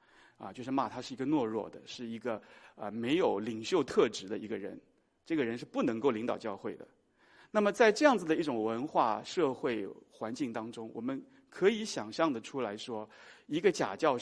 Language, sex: Chinese, male